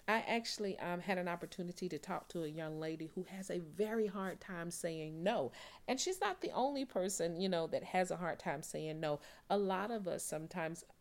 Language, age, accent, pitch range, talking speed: English, 40-59, American, 170-210 Hz, 220 wpm